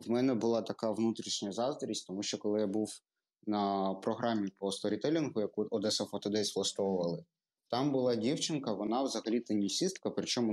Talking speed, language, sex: 150 wpm, Ukrainian, male